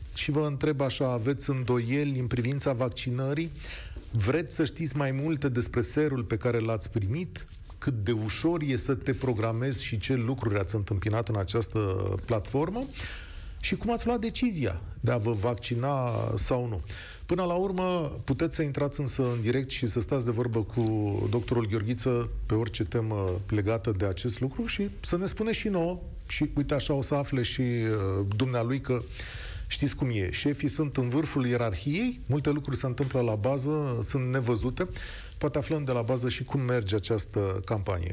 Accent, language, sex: native, Romanian, male